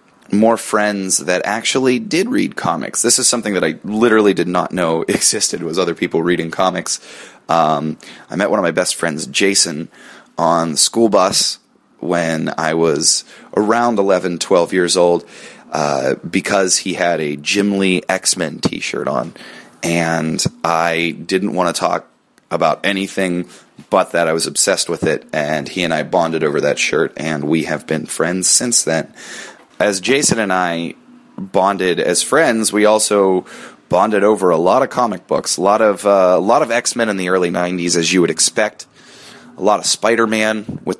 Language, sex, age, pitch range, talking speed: English, male, 30-49, 90-115 Hz, 175 wpm